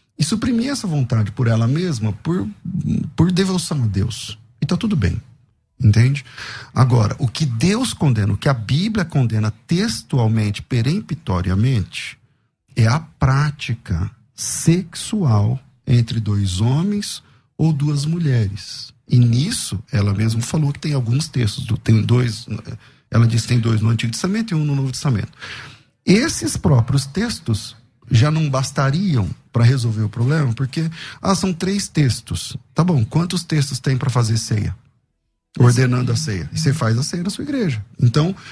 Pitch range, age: 115-165 Hz, 40-59